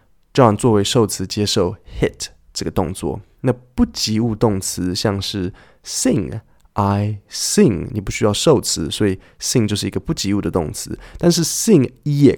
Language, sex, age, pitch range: Chinese, male, 20-39, 95-120 Hz